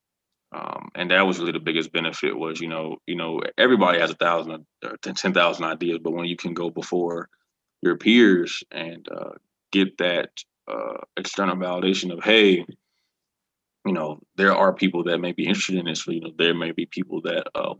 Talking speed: 190 wpm